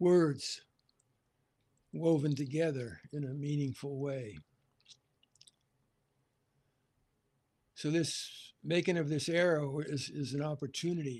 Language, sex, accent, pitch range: English, male, American, 125-150 Hz